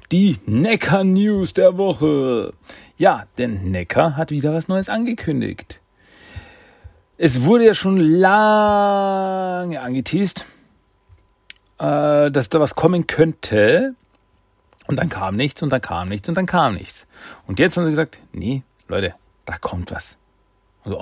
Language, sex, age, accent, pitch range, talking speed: German, male, 40-59, German, 100-160 Hz, 135 wpm